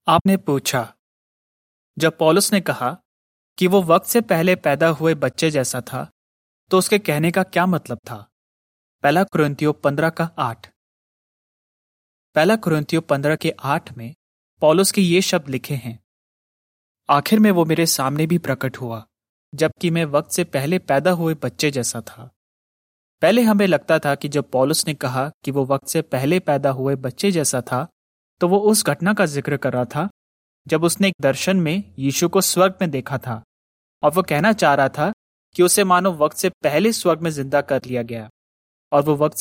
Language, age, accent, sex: Hindi, 30-49, native, male